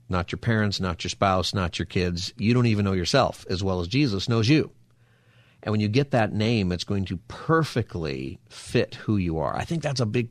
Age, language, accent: 50-69, English, American